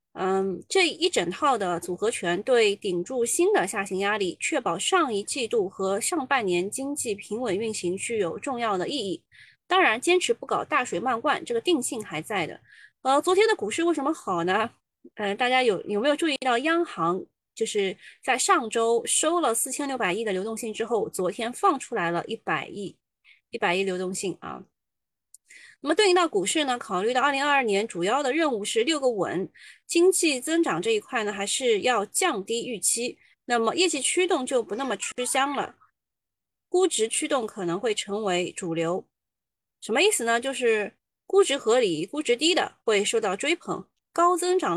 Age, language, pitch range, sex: 20-39, Chinese, 215-360 Hz, female